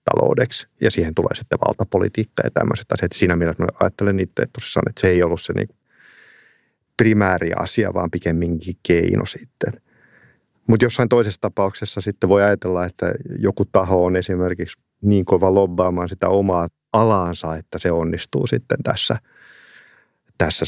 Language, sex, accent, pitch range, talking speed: Finnish, male, native, 85-100 Hz, 140 wpm